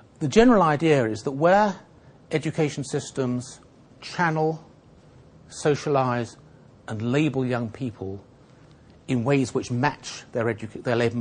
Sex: male